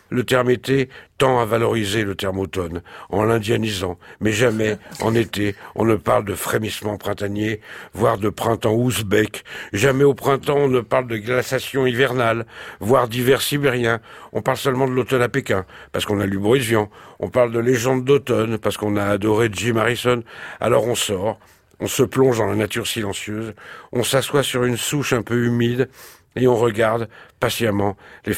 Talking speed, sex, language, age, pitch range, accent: 180 wpm, male, French, 60-79, 105-125 Hz, French